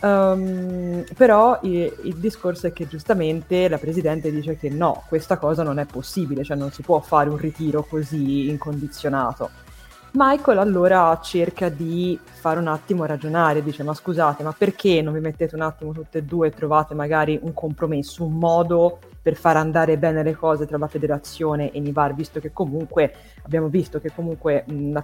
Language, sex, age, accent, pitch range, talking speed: Italian, female, 20-39, native, 155-180 Hz, 175 wpm